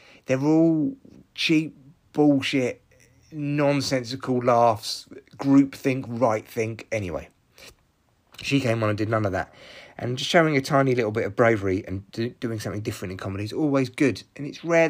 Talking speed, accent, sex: 165 wpm, British, male